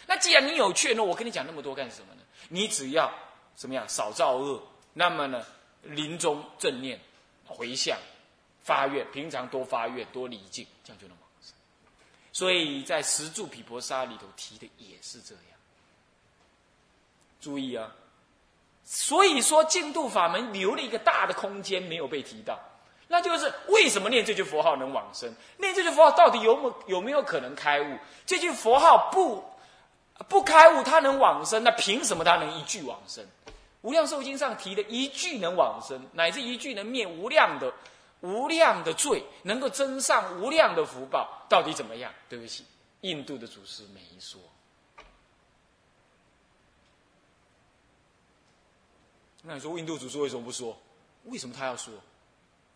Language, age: Chinese, 20-39